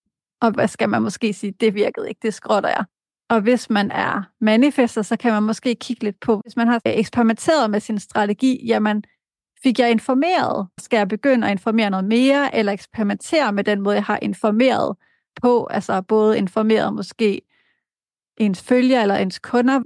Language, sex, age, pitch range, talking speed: Danish, female, 30-49, 210-245 Hz, 180 wpm